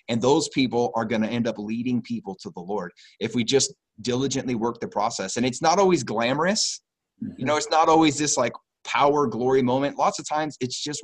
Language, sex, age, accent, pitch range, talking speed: English, male, 30-49, American, 105-130 Hz, 215 wpm